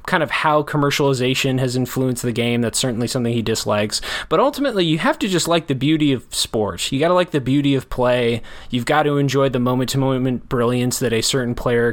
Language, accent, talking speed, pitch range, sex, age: English, American, 215 wpm, 120-150 Hz, male, 20-39